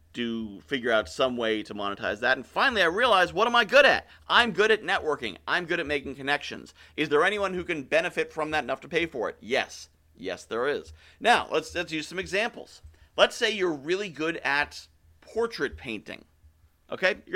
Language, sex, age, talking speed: English, male, 40-59, 205 wpm